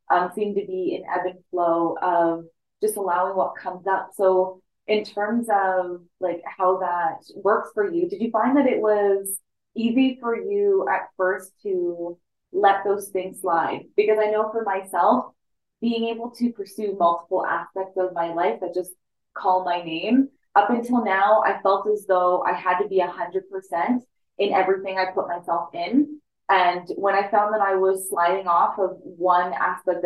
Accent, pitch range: American, 180-215 Hz